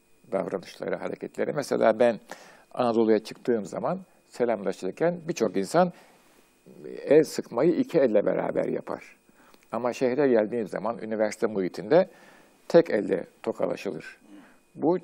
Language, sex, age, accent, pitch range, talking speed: Turkish, male, 60-79, native, 110-180 Hz, 105 wpm